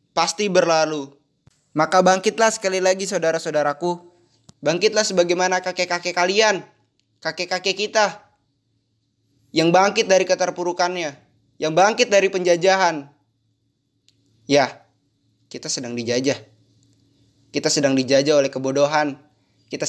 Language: Indonesian